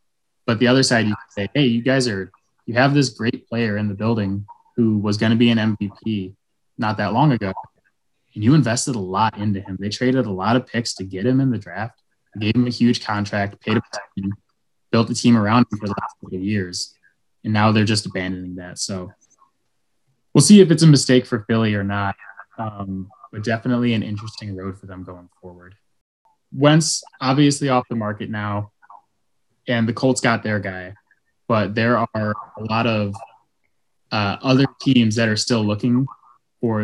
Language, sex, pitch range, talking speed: English, male, 105-120 Hz, 195 wpm